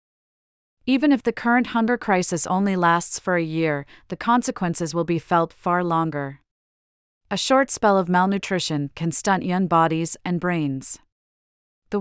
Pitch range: 165-205 Hz